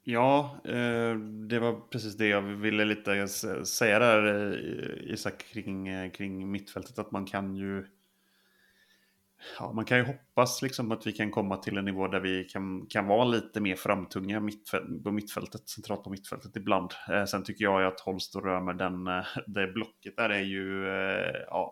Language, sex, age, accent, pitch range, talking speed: Swedish, male, 30-49, Norwegian, 95-110 Hz, 165 wpm